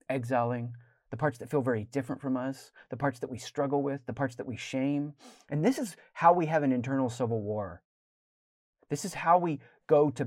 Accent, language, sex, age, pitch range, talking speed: American, English, male, 30-49, 110-140 Hz, 210 wpm